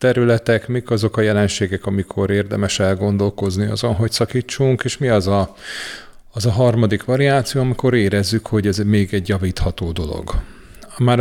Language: Hungarian